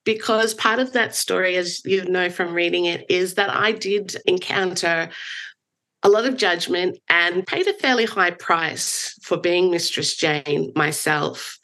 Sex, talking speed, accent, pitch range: female, 160 wpm, Australian, 155-195 Hz